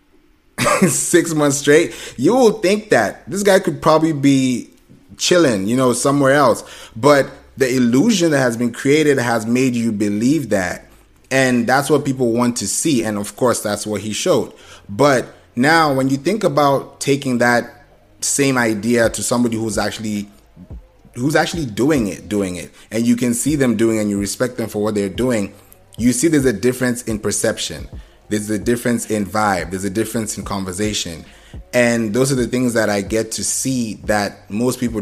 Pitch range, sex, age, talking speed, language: 105-130 Hz, male, 20-39, 185 wpm, English